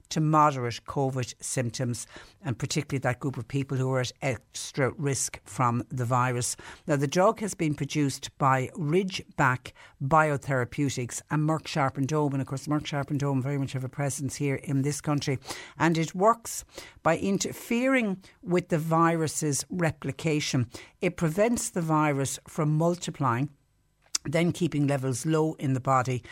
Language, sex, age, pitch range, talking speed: English, female, 60-79, 125-155 Hz, 155 wpm